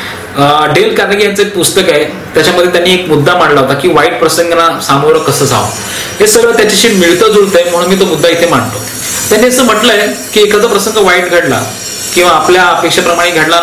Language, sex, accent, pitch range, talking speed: Marathi, male, native, 175-235 Hz, 180 wpm